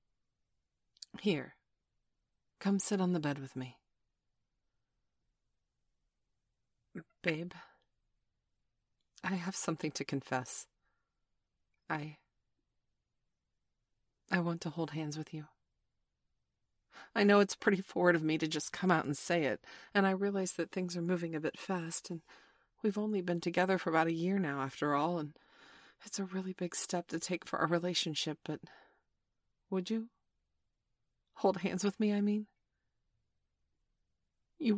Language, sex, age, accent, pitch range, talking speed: English, female, 40-59, American, 160-205 Hz, 135 wpm